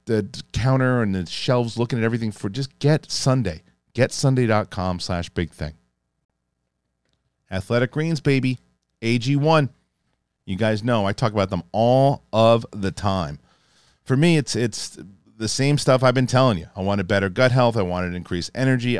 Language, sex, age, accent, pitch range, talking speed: English, male, 40-59, American, 90-120 Hz, 160 wpm